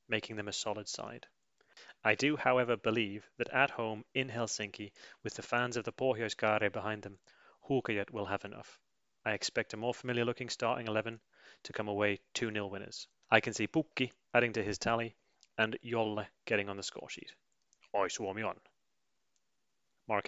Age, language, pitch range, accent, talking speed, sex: 30-49, English, 105-125 Hz, British, 165 wpm, male